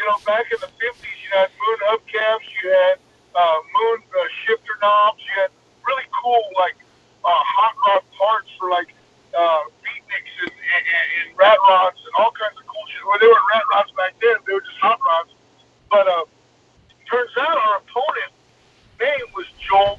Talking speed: 190 wpm